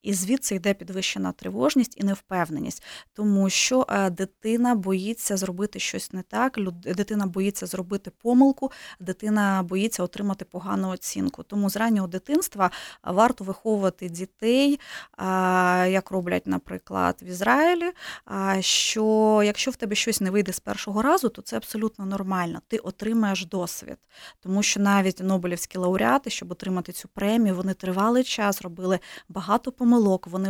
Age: 20-39